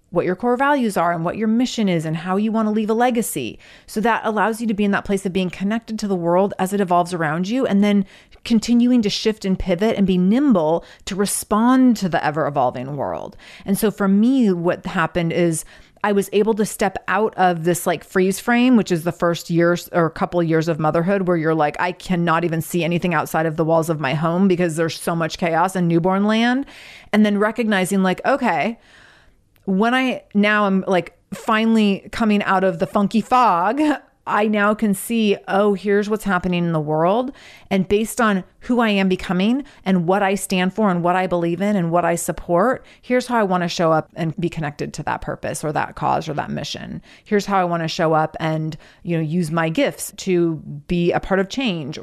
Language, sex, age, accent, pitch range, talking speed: English, female, 30-49, American, 170-210 Hz, 225 wpm